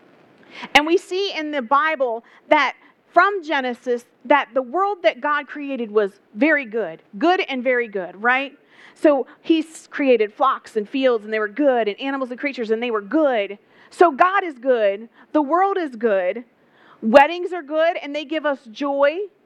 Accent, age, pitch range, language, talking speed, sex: American, 40-59, 245-335 Hz, English, 175 wpm, female